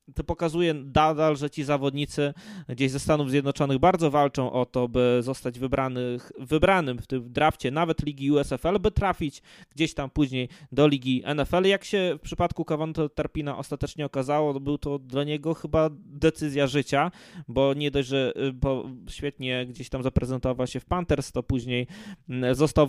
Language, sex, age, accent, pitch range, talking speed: Polish, male, 20-39, native, 130-155 Hz, 165 wpm